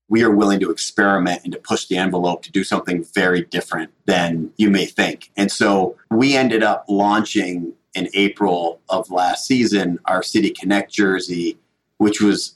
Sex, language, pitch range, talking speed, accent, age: male, English, 95-110 Hz, 170 wpm, American, 40-59